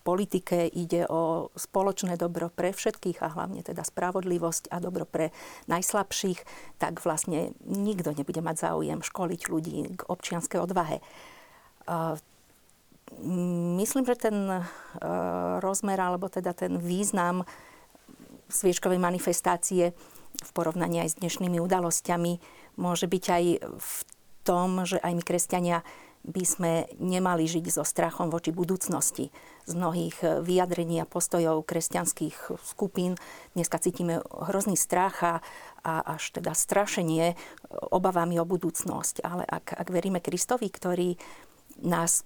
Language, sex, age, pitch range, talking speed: Slovak, female, 50-69, 170-190 Hz, 120 wpm